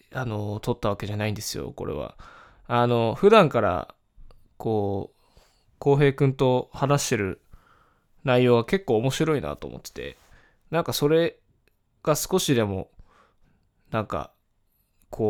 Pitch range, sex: 110-155 Hz, male